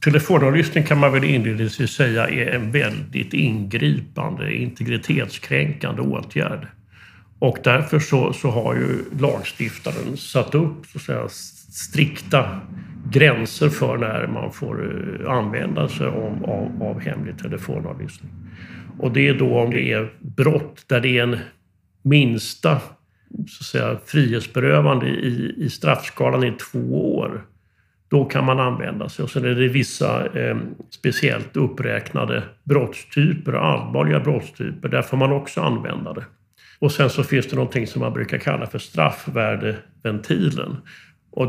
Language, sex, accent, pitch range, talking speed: Swedish, male, native, 115-145 Hz, 140 wpm